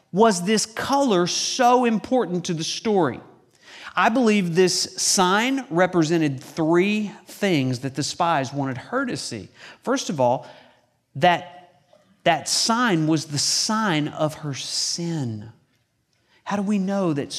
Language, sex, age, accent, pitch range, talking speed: English, male, 40-59, American, 140-210 Hz, 135 wpm